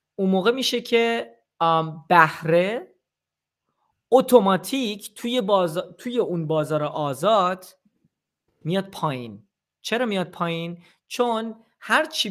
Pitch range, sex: 160-205 Hz, male